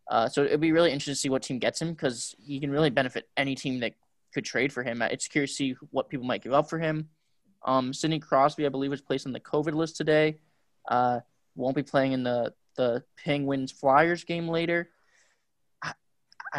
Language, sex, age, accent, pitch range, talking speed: English, male, 10-29, American, 130-160 Hz, 215 wpm